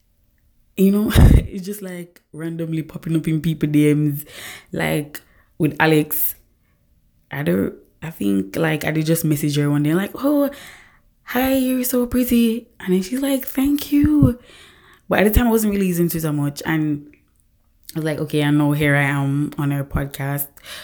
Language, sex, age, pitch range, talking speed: English, female, 20-39, 140-165 Hz, 175 wpm